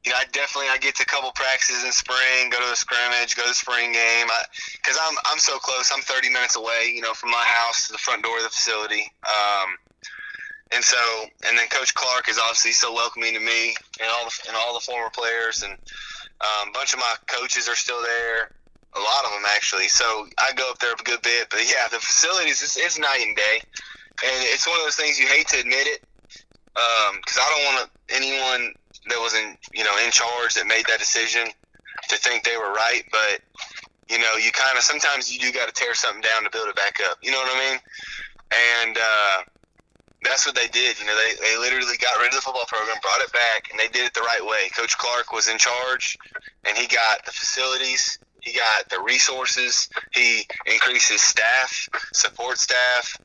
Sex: male